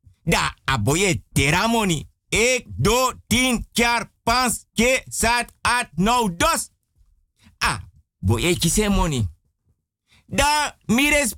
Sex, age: male, 50-69